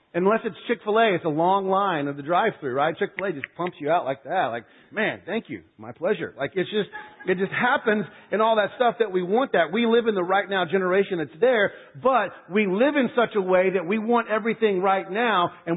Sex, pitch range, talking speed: male, 160-205 Hz, 230 wpm